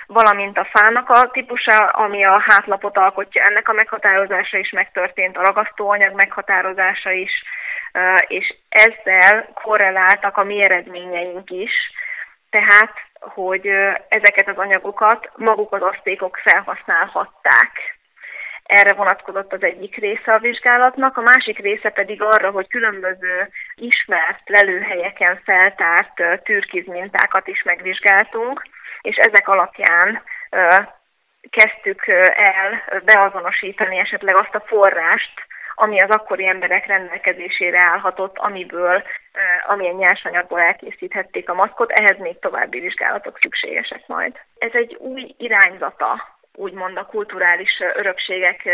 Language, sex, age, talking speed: Hungarian, female, 20-39, 110 wpm